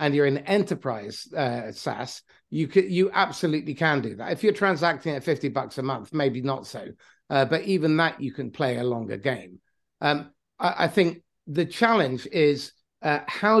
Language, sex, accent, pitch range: English, male, British, 140-185 Hz